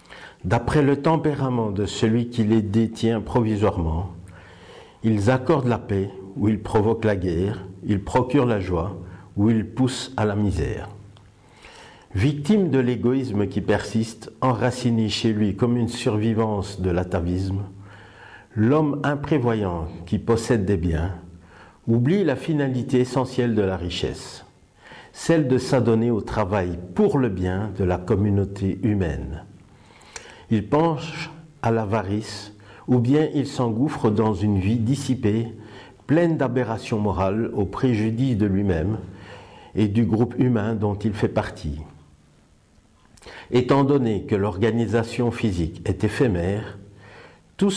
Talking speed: 125 wpm